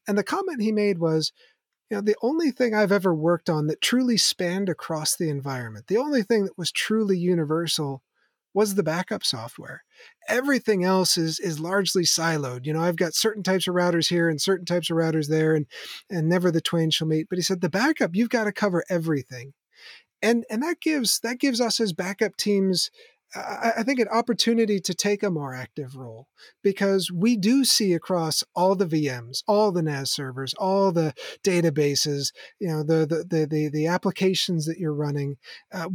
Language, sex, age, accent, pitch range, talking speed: English, male, 30-49, American, 160-205 Hz, 195 wpm